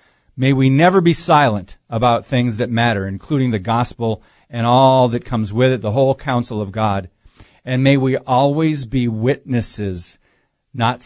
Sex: male